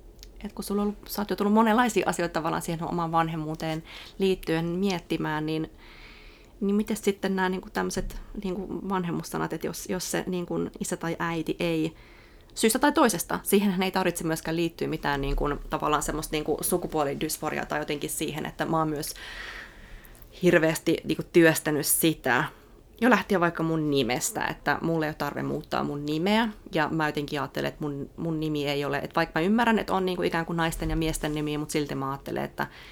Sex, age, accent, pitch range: female, 30-49, native, 155-195 Hz